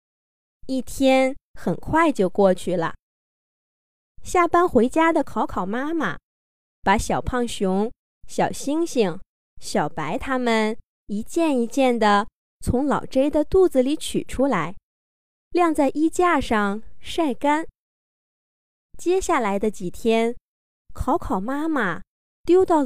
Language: Chinese